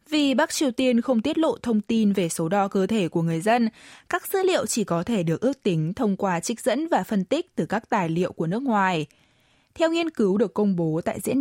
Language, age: Vietnamese, 20-39